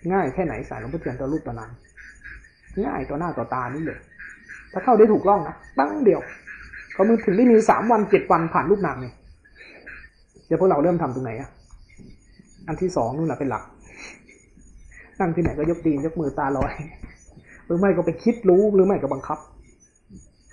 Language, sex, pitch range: Thai, male, 135-185 Hz